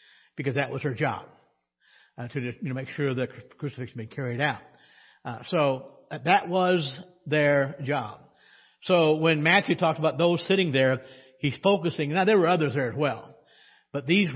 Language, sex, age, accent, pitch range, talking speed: English, male, 60-79, American, 125-170 Hz, 165 wpm